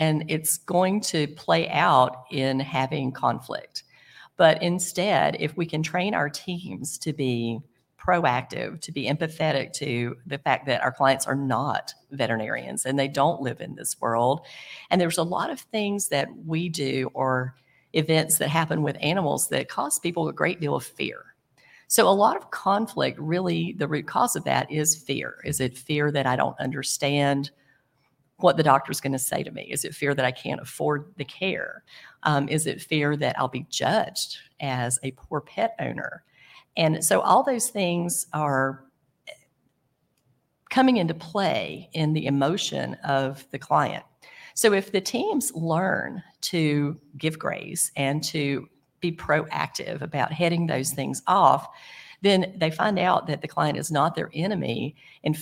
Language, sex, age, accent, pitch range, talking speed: English, female, 50-69, American, 135-175 Hz, 170 wpm